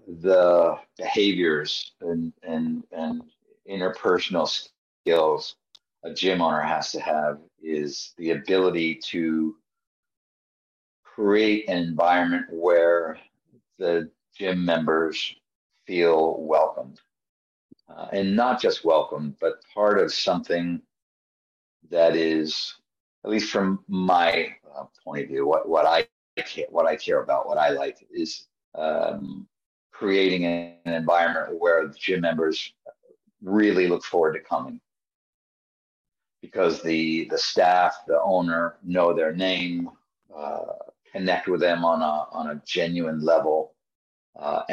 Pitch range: 80-110 Hz